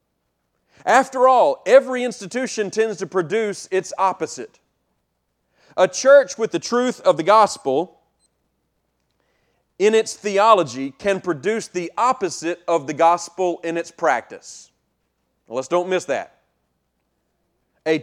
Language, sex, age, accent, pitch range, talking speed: English, male, 40-59, American, 145-205 Hz, 115 wpm